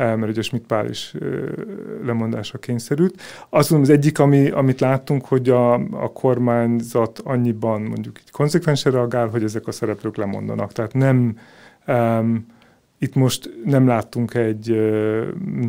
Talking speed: 140 wpm